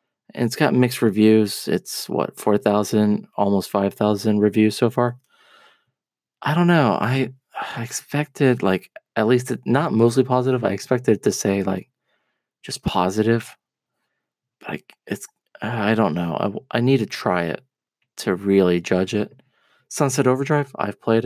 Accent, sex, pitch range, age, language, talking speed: American, male, 105-140 Hz, 20-39, English, 150 wpm